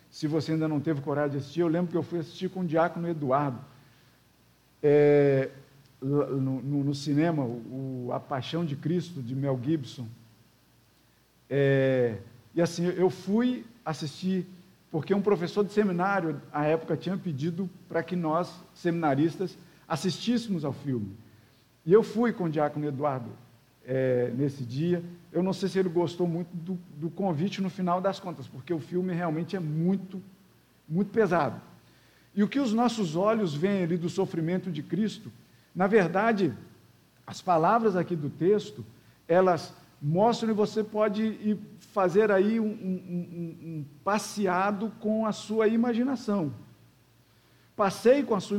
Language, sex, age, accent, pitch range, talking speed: Portuguese, male, 50-69, Brazilian, 145-195 Hz, 145 wpm